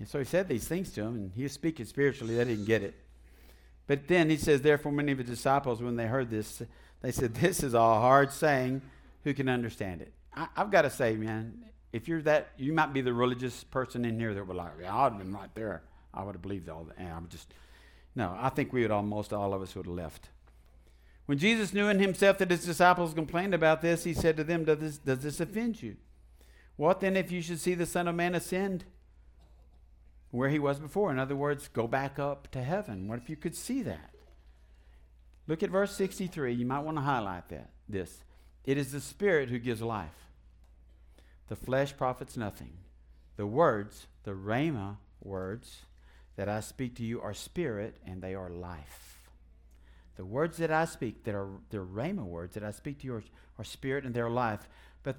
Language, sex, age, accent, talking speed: English, male, 50-69, American, 220 wpm